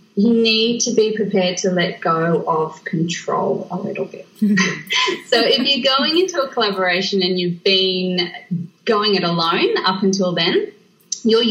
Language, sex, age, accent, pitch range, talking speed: English, female, 30-49, Australian, 170-210 Hz, 155 wpm